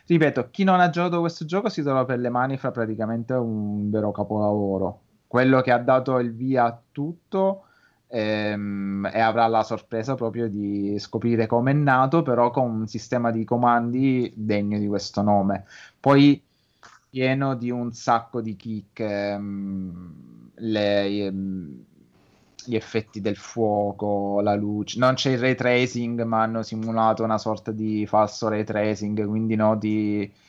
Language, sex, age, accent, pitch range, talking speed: Italian, male, 20-39, native, 105-130 Hz, 155 wpm